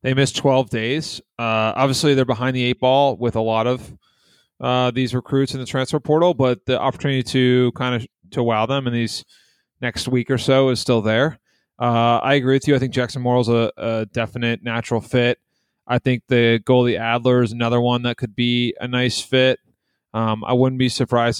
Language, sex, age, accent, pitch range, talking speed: English, male, 30-49, American, 115-130 Hz, 205 wpm